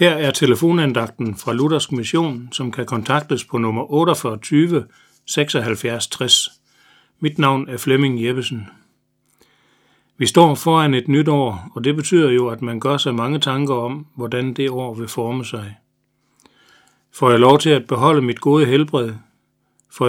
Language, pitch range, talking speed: Danish, 120-145 Hz, 155 wpm